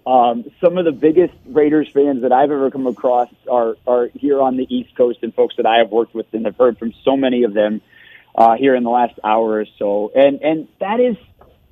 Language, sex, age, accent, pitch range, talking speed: English, male, 40-59, American, 125-205 Hz, 235 wpm